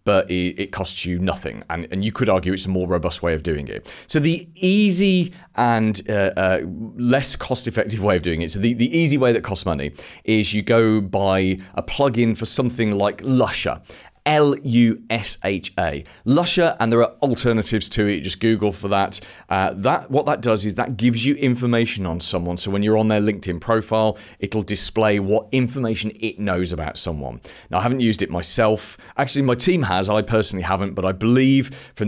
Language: English